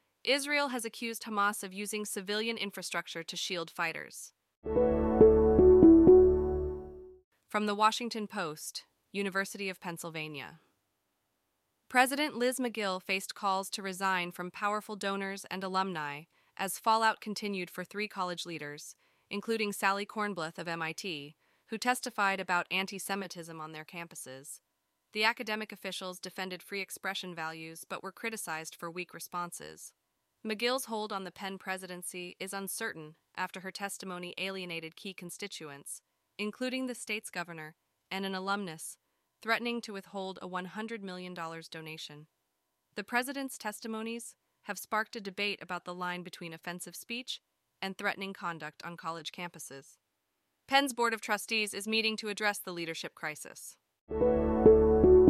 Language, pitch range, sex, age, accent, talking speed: English, 175-220 Hz, female, 30-49, American, 130 wpm